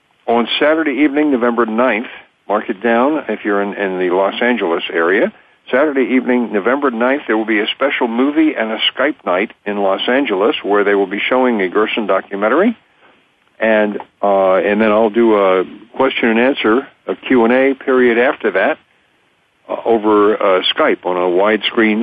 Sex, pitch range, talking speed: male, 100-125 Hz, 170 wpm